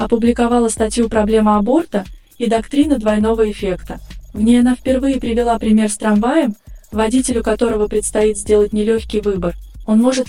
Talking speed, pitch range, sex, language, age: 140 wpm, 215-250 Hz, female, Russian, 20-39